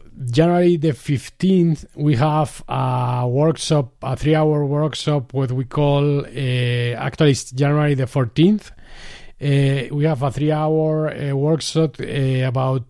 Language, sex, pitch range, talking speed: English, male, 130-150 Hz, 125 wpm